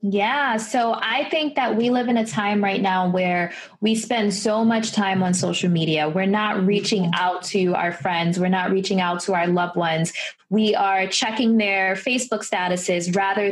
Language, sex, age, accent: English, female, 20-39, American